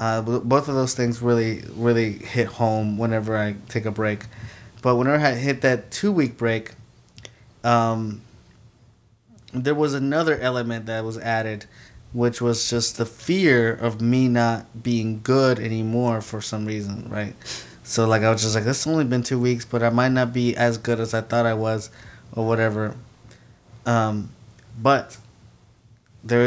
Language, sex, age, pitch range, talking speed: English, male, 20-39, 110-125 Hz, 165 wpm